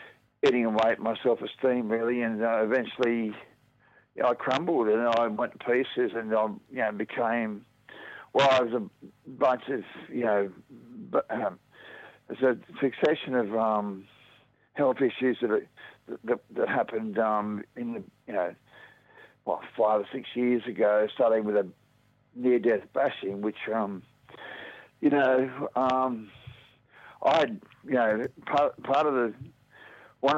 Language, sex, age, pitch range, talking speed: English, male, 60-79, 110-125 Hz, 145 wpm